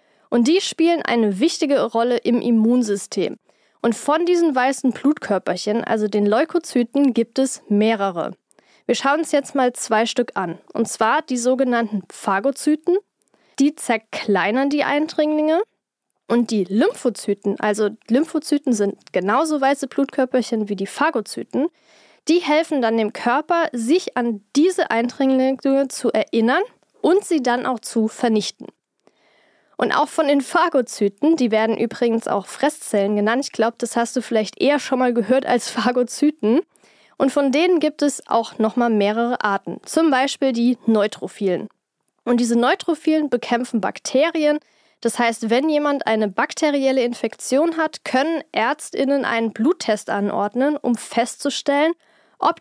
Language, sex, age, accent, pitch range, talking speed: German, female, 10-29, German, 230-295 Hz, 140 wpm